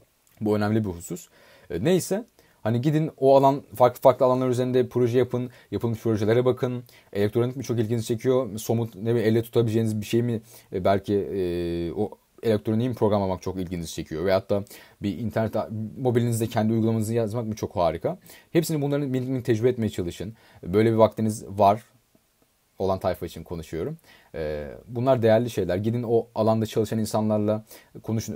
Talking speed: 155 wpm